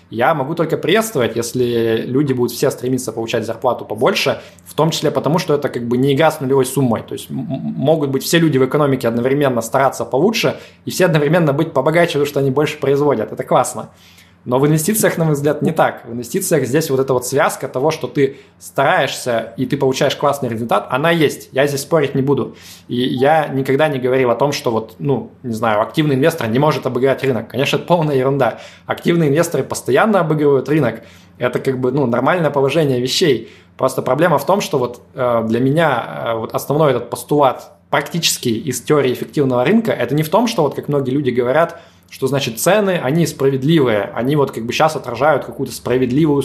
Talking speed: 200 wpm